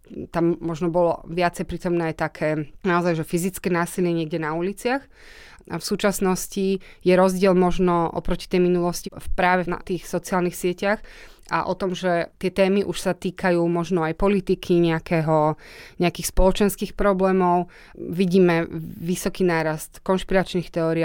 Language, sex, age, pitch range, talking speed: Slovak, female, 20-39, 165-185 Hz, 140 wpm